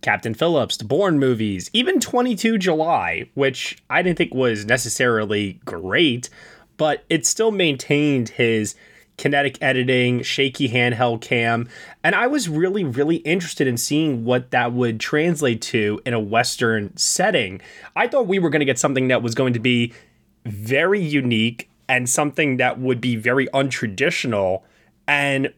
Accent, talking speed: American, 150 wpm